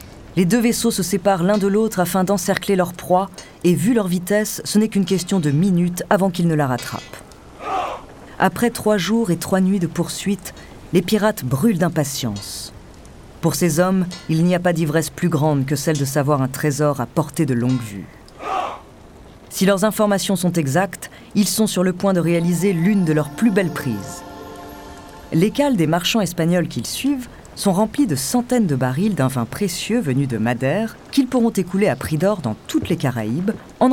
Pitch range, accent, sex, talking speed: 150-215 Hz, French, female, 190 wpm